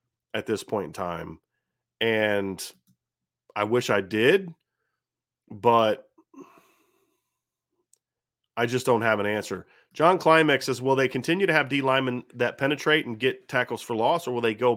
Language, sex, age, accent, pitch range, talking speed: English, male, 30-49, American, 105-135 Hz, 155 wpm